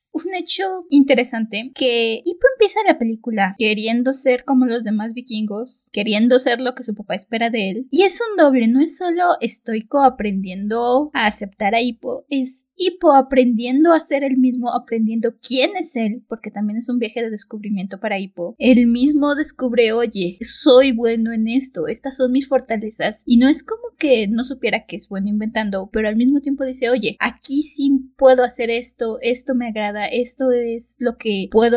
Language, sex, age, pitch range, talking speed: Spanish, female, 20-39, 225-280 Hz, 185 wpm